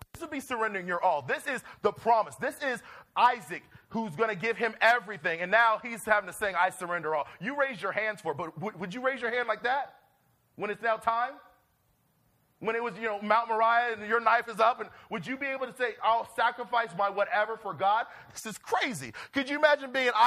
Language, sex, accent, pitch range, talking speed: English, male, American, 170-245 Hz, 235 wpm